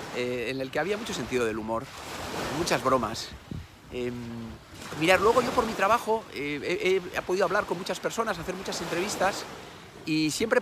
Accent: Spanish